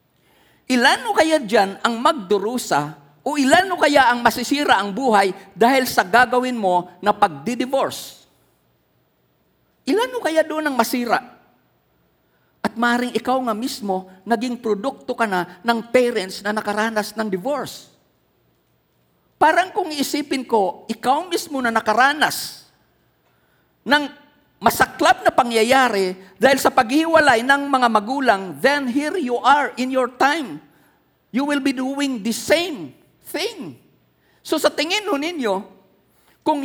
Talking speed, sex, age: 125 wpm, male, 50-69